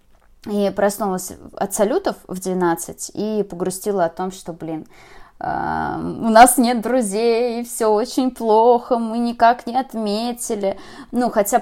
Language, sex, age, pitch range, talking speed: Russian, female, 20-39, 175-215 Hz, 135 wpm